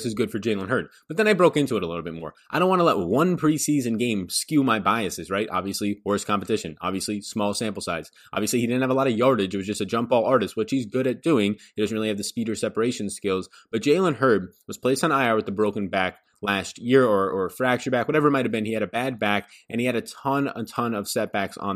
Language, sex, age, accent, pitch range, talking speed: English, male, 20-39, American, 100-135 Hz, 275 wpm